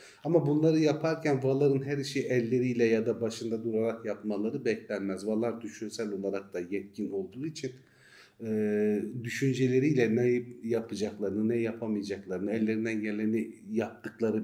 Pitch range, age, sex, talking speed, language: 105-130 Hz, 40-59, male, 120 wpm, Turkish